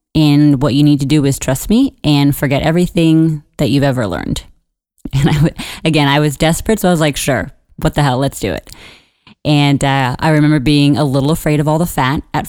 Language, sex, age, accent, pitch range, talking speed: English, female, 20-39, American, 135-155 Hz, 215 wpm